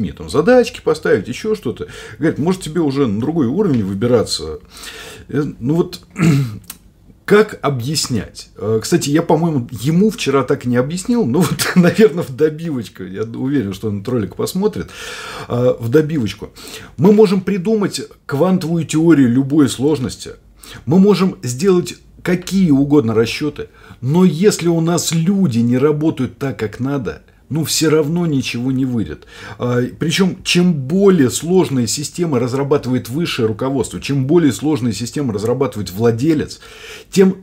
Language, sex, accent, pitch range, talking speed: Russian, male, native, 125-175 Hz, 135 wpm